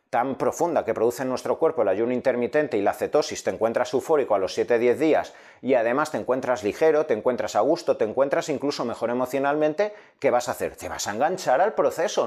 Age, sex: 30-49, male